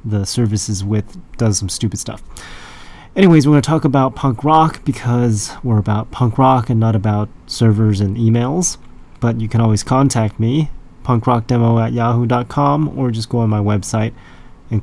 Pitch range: 105-130 Hz